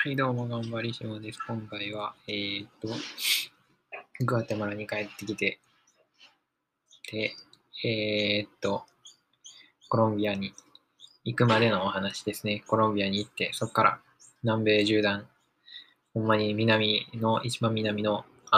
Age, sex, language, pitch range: 20-39, male, Japanese, 105-115 Hz